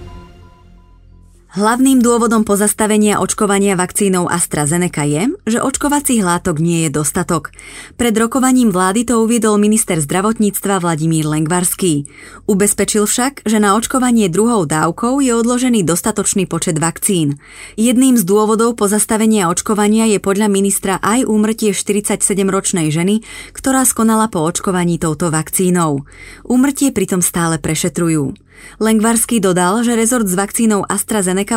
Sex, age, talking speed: female, 20-39, 120 wpm